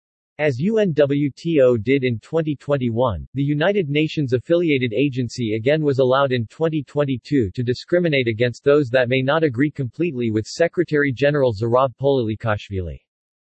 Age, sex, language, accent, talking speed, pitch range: 40-59, male, English, American, 120 wpm, 125-150 Hz